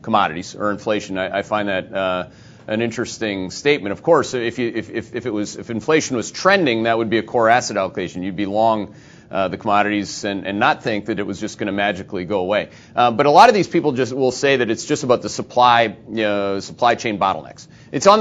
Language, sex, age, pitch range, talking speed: English, male, 30-49, 105-140 Hz, 240 wpm